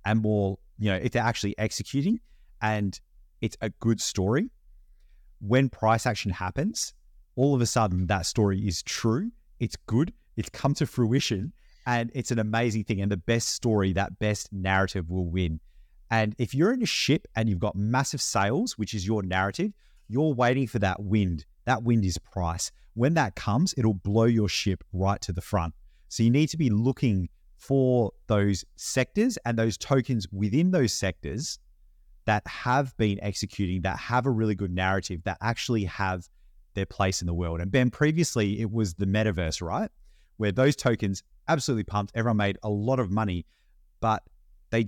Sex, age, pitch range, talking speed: male, 30-49, 95-120 Hz, 180 wpm